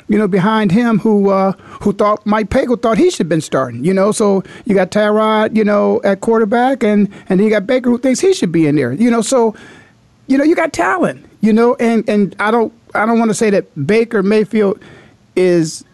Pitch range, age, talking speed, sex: 185-245 Hz, 50-69, 230 wpm, male